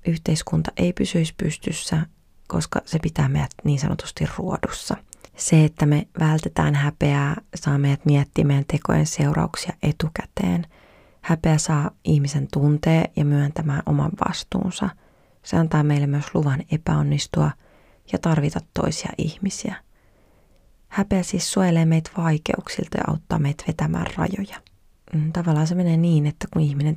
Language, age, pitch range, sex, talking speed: Finnish, 30-49, 150-180 Hz, female, 125 wpm